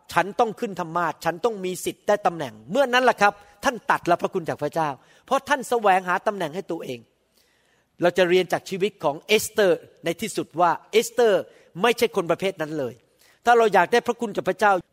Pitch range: 185-250 Hz